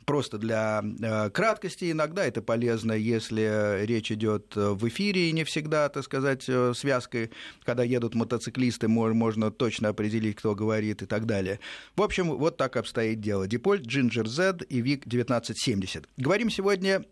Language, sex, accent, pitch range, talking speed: Russian, male, native, 110-160 Hz, 155 wpm